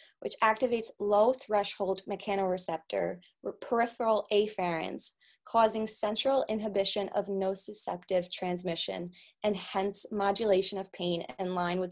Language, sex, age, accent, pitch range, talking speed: English, female, 20-39, American, 180-210 Hz, 110 wpm